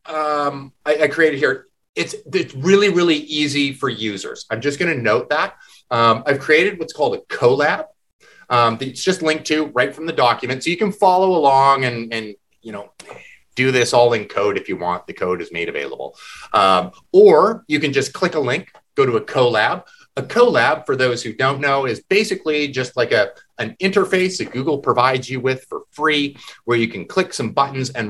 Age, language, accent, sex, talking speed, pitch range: 30-49, English, American, male, 205 wpm, 125-200 Hz